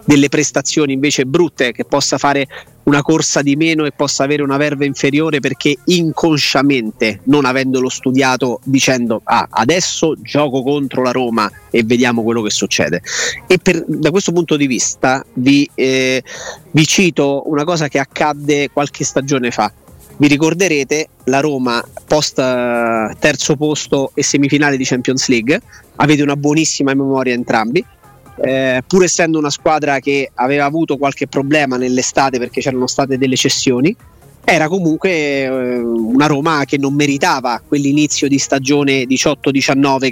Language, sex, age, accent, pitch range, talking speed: Italian, male, 30-49, native, 130-150 Hz, 145 wpm